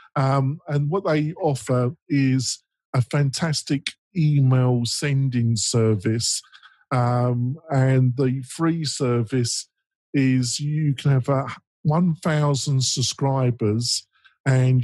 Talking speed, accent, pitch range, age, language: 100 wpm, British, 125-150 Hz, 50-69, English